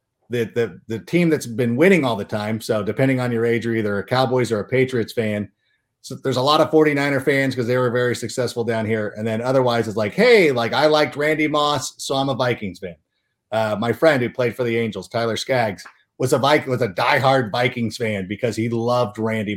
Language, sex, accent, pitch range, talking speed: English, male, American, 115-155 Hz, 230 wpm